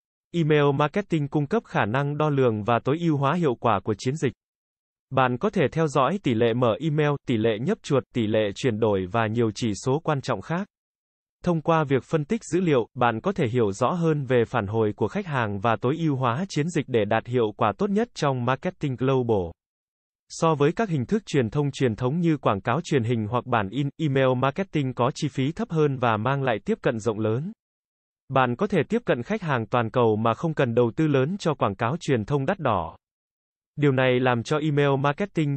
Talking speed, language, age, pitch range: 225 wpm, Vietnamese, 20-39, 120-160 Hz